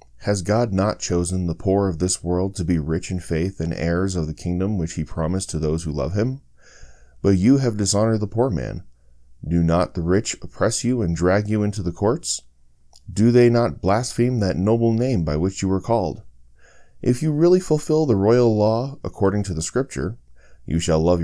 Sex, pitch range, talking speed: male, 80-110 Hz, 205 wpm